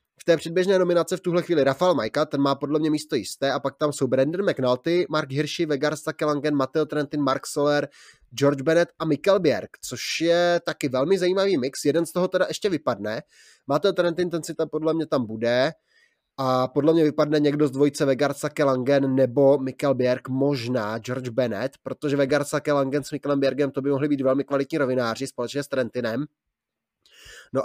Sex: male